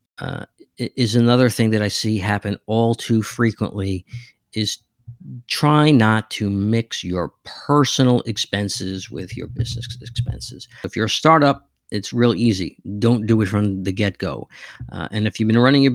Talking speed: 165 wpm